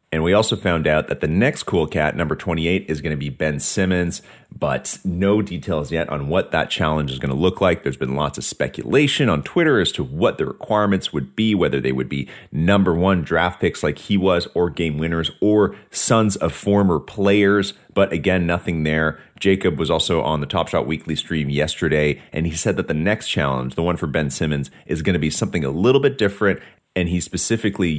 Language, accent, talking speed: English, American, 220 wpm